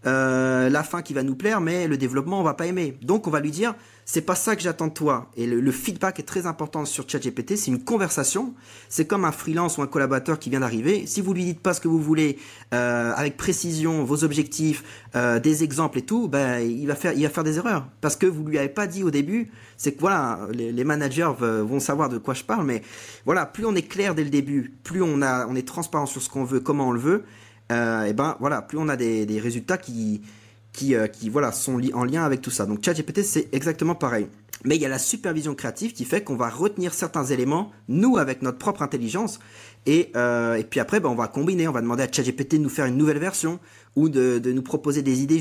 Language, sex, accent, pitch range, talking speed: French, male, French, 125-165 Hz, 255 wpm